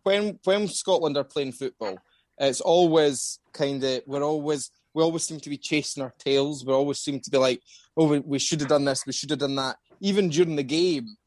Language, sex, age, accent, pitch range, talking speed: English, male, 20-39, British, 125-150 Hz, 225 wpm